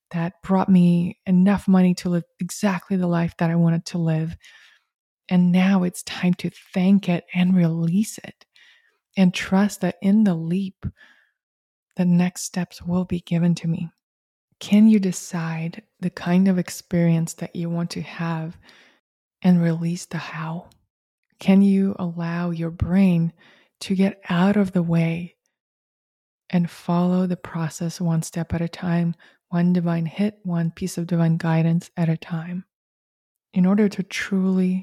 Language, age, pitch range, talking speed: English, 20-39, 170-190 Hz, 155 wpm